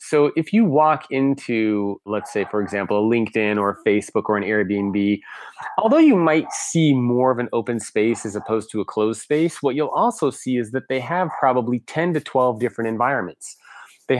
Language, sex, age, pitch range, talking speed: English, male, 30-49, 115-155 Hz, 195 wpm